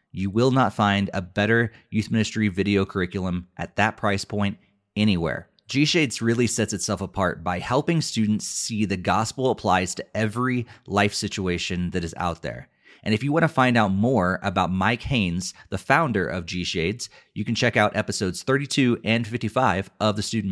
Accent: American